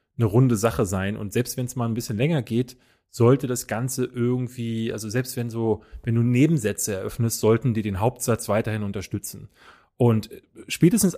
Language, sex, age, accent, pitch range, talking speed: German, male, 30-49, German, 110-130 Hz, 175 wpm